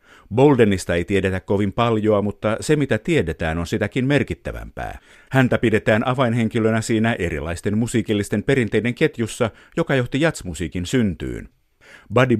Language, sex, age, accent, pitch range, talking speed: Finnish, male, 50-69, native, 90-125 Hz, 120 wpm